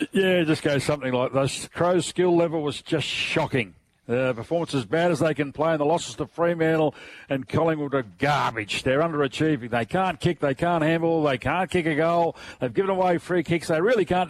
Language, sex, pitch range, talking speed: English, male, 130-170 Hz, 220 wpm